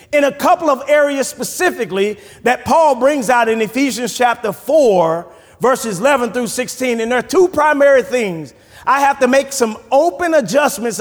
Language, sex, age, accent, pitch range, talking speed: English, male, 30-49, American, 205-275 Hz, 170 wpm